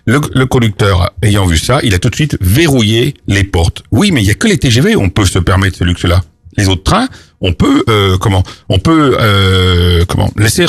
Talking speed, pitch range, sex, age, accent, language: 235 wpm, 90-125 Hz, male, 60-79, French, French